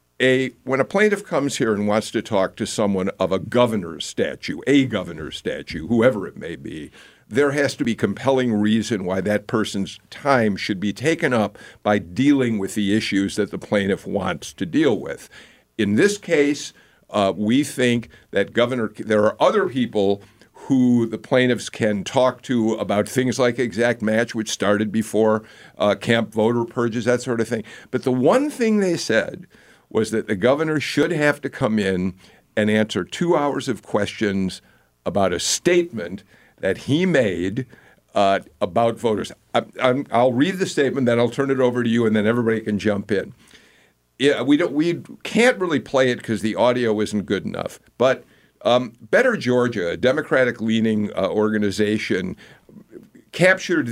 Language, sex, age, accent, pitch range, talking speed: English, male, 50-69, American, 105-135 Hz, 175 wpm